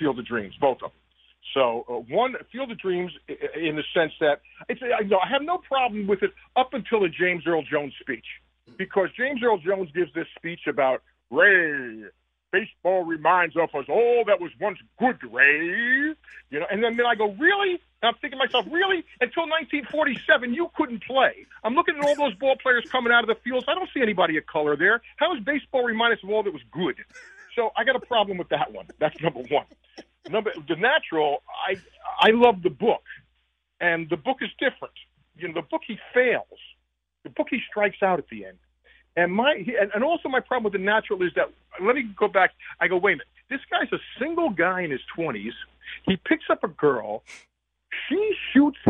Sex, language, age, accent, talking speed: male, English, 40-59, American, 210 wpm